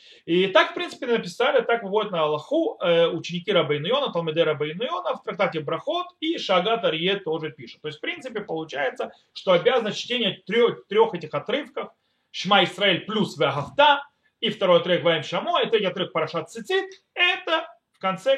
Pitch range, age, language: 175-255 Hz, 30-49, Russian